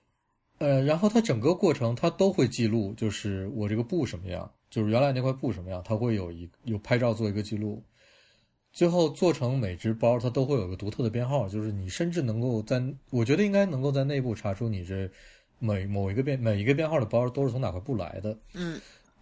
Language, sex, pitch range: Chinese, male, 105-145 Hz